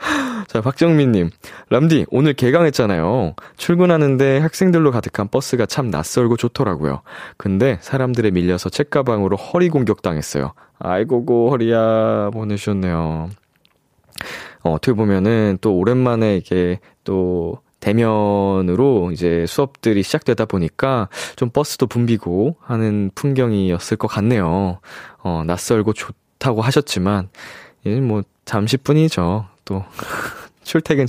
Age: 20-39